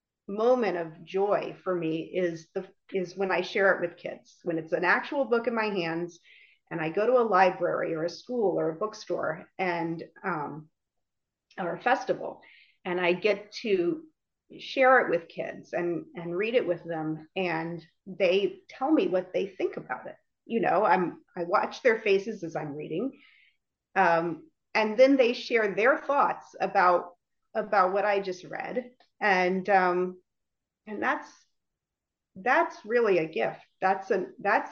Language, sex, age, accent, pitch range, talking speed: English, female, 30-49, American, 175-230 Hz, 165 wpm